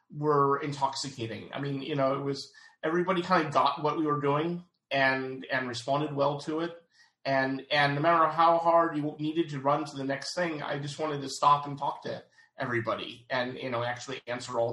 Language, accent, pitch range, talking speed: English, American, 130-155 Hz, 210 wpm